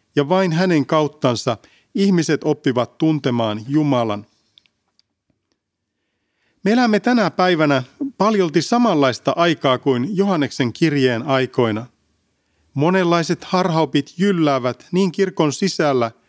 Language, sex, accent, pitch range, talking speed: Finnish, male, native, 125-185 Hz, 90 wpm